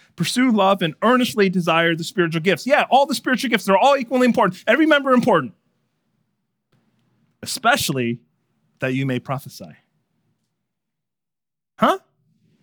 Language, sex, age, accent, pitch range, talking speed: English, male, 30-49, American, 165-240 Hz, 125 wpm